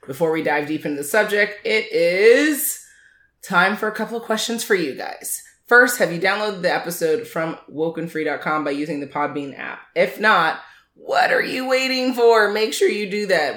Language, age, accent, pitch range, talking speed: English, 20-39, American, 155-200 Hz, 190 wpm